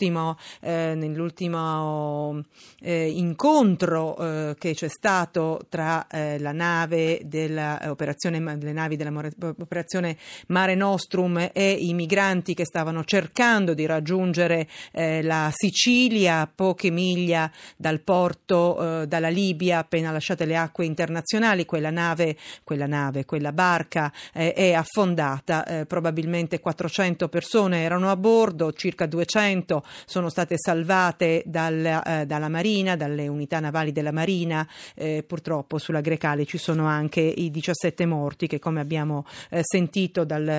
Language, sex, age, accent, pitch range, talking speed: Italian, female, 40-59, native, 150-175 Hz, 130 wpm